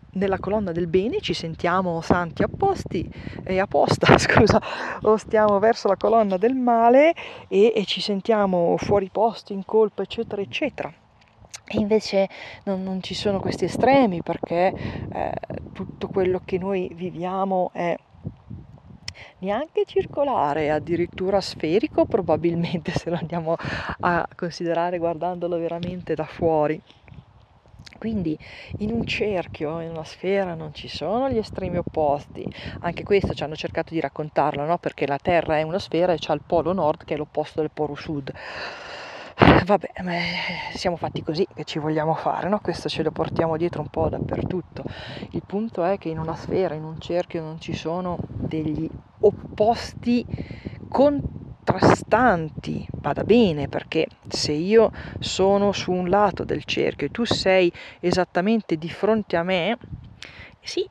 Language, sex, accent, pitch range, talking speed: Italian, female, native, 160-200 Hz, 145 wpm